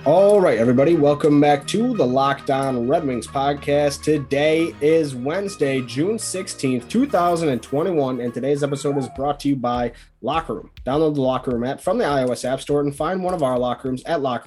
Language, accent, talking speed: English, American, 190 wpm